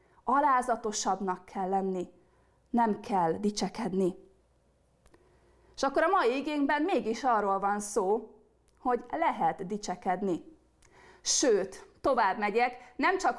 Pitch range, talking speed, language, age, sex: 210-265 Hz, 105 wpm, Hungarian, 30-49, female